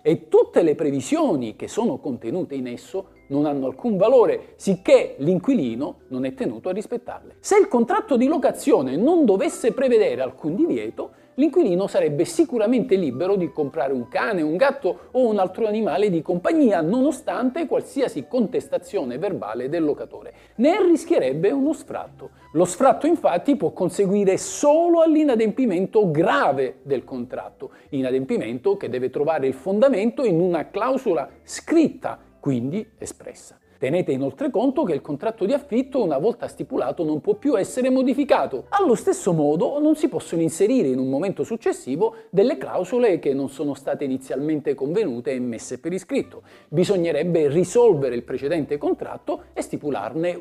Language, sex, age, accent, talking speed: Italian, male, 50-69, native, 150 wpm